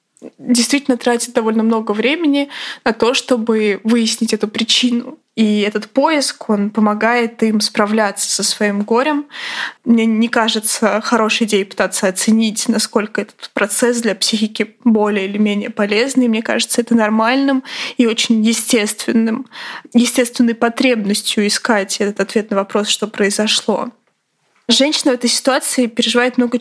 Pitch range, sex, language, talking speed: 210-245 Hz, female, Russian, 130 wpm